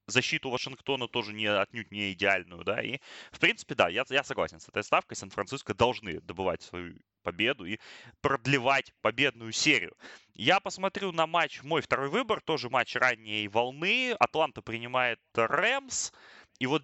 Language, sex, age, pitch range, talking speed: Russian, male, 20-39, 110-145 Hz, 150 wpm